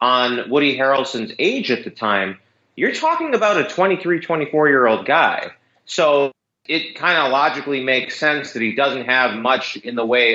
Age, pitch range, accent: 30-49, 120-155 Hz, American